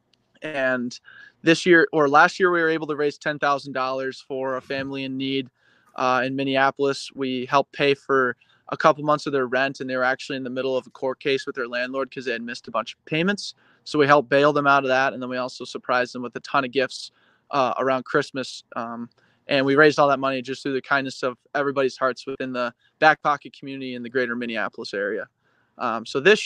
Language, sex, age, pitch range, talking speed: English, male, 20-39, 130-145 Hz, 230 wpm